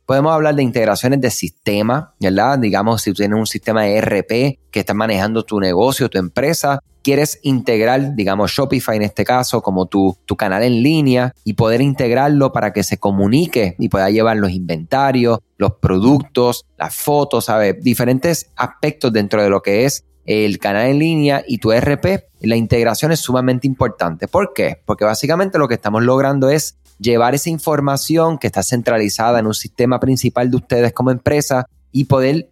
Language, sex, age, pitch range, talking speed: Spanish, male, 20-39, 105-140 Hz, 175 wpm